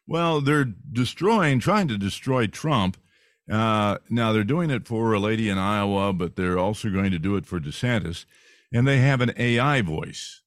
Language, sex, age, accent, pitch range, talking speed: English, male, 50-69, American, 105-145 Hz, 185 wpm